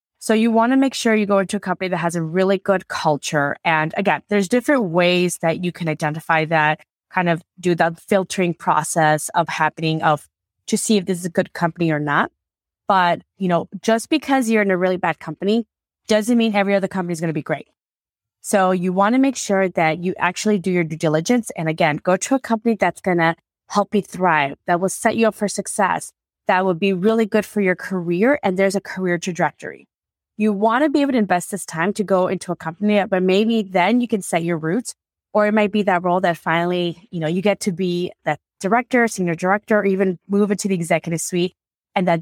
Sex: female